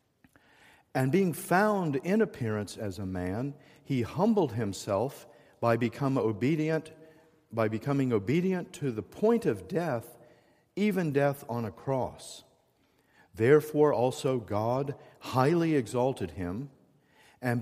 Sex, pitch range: male, 115-150 Hz